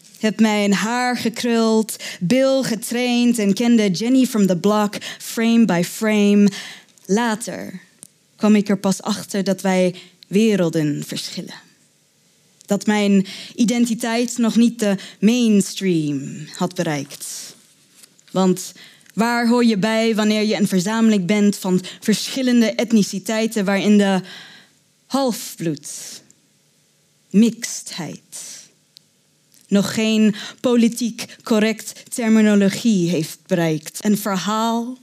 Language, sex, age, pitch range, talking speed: Dutch, female, 20-39, 190-230 Hz, 105 wpm